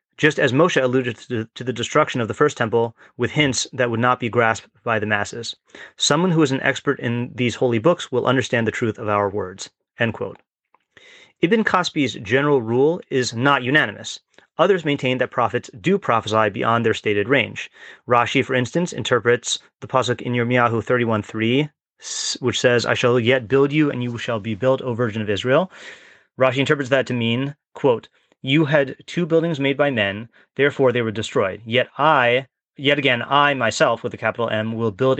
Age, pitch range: 30-49, 115-140 Hz